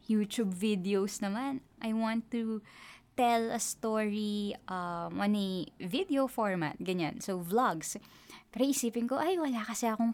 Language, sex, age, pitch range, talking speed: Filipino, female, 20-39, 205-280 Hz, 135 wpm